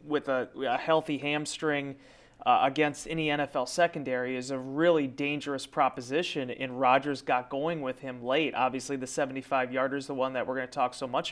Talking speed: 185 wpm